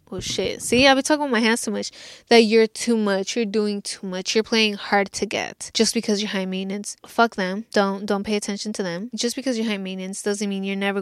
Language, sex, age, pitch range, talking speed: English, female, 20-39, 200-235 Hz, 250 wpm